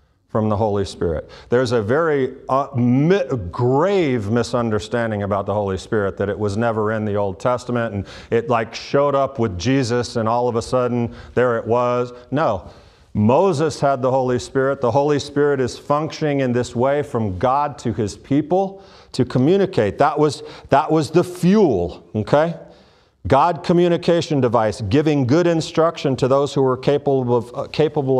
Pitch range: 110-160 Hz